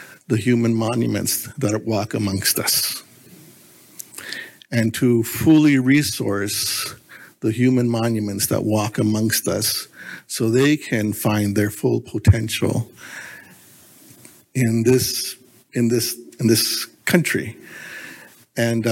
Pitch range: 110-130 Hz